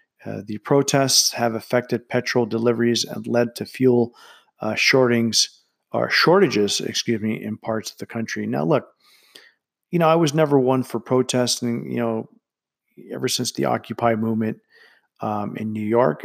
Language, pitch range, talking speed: English, 110-130 Hz, 160 wpm